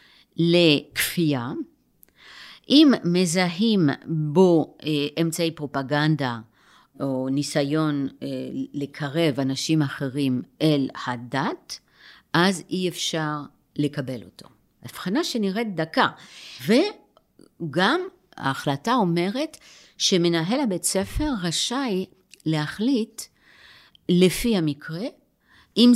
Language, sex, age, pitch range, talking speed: Hebrew, female, 50-69, 145-210 Hz, 75 wpm